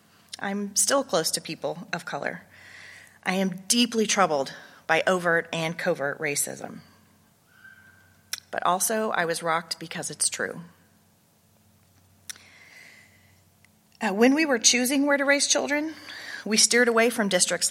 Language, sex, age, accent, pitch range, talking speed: English, female, 30-49, American, 140-190 Hz, 125 wpm